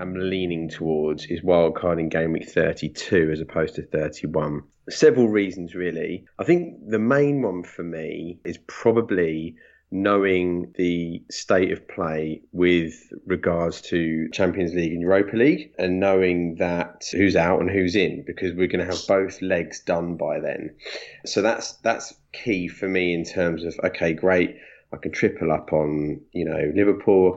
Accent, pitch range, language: British, 80-90 Hz, English